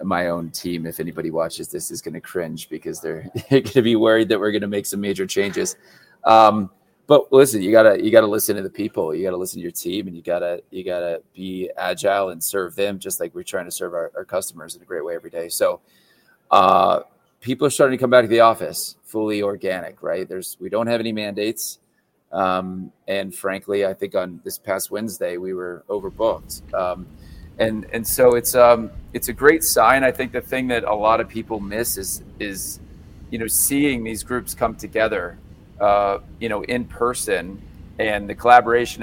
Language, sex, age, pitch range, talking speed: English, male, 30-49, 95-125 Hz, 215 wpm